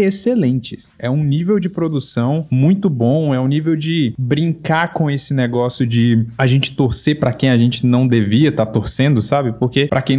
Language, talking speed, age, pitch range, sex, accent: Portuguese, 195 wpm, 20-39, 120-160 Hz, male, Brazilian